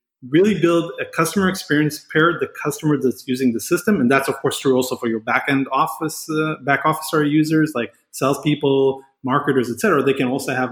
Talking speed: 190 wpm